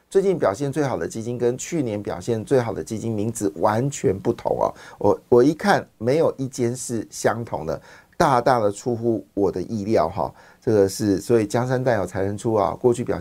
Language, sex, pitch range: Chinese, male, 110-140 Hz